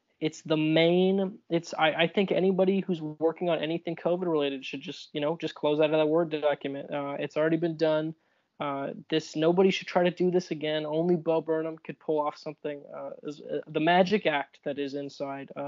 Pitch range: 145-165 Hz